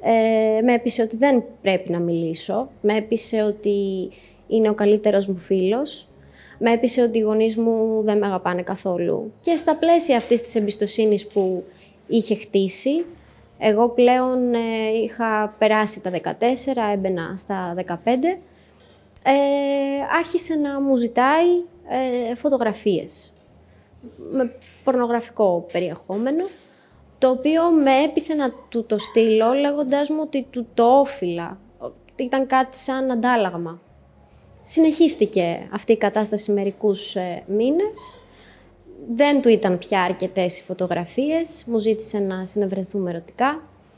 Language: Greek